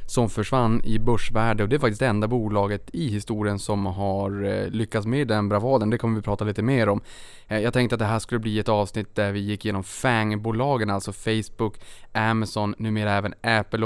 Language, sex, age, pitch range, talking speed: Swedish, male, 20-39, 105-120 Hz, 200 wpm